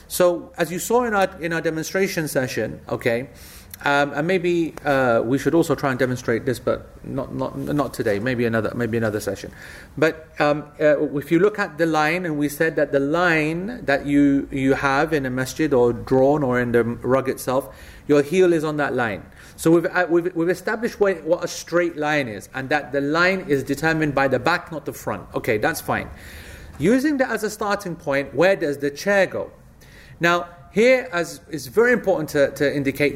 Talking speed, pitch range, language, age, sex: 205 wpm, 135-175 Hz, English, 30-49, male